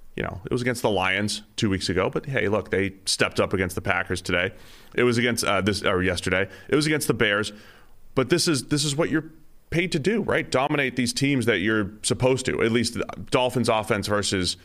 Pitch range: 100-125 Hz